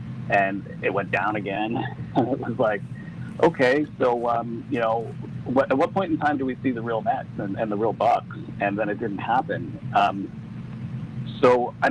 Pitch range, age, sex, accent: 110-140 Hz, 40-59, male, American